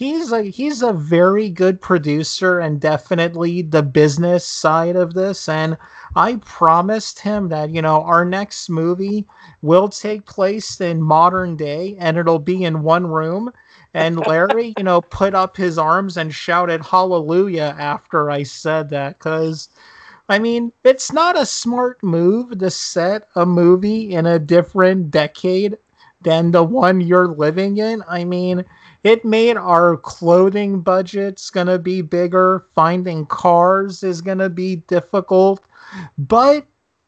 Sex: male